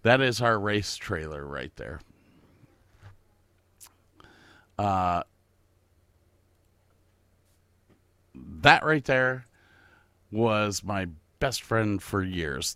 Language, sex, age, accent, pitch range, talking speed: English, male, 50-69, American, 90-120 Hz, 80 wpm